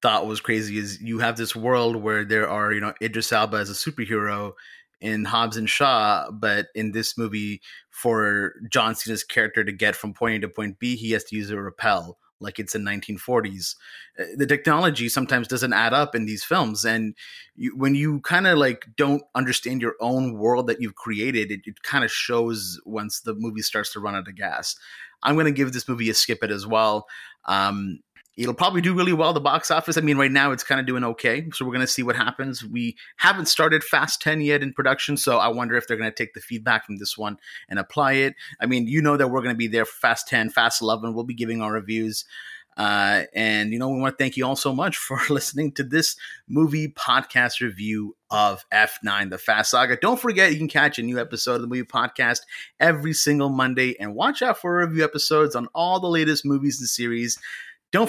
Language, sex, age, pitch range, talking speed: English, male, 30-49, 110-145 Hz, 225 wpm